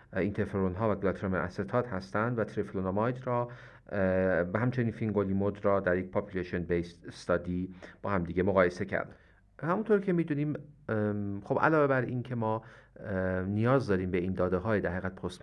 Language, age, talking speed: Persian, 40-59, 150 wpm